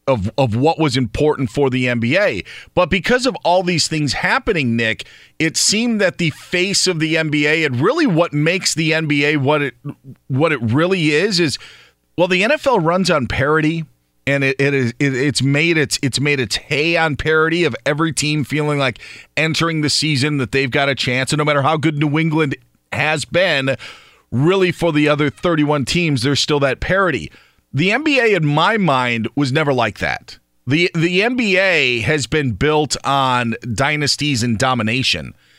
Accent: American